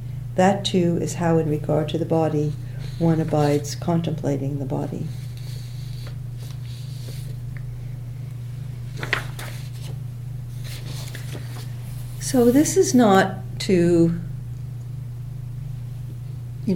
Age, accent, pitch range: 60-79, American, 125-160 Hz